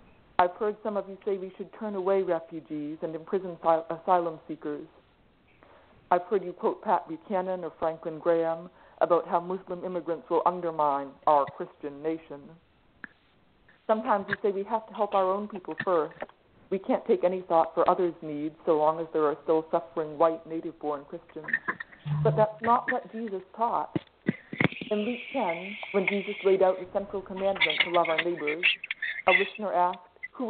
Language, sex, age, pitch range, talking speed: English, female, 50-69, 160-195 Hz, 170 wpm